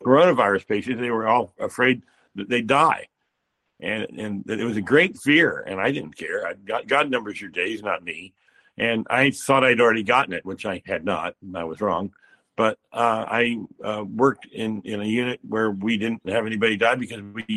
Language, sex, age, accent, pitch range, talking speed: English, male, 60-79, American, 100-125 Hz, 205 wpm